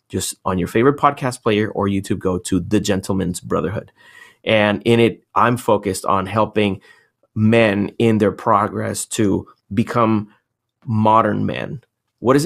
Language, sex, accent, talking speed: English, male, American, 145 wpm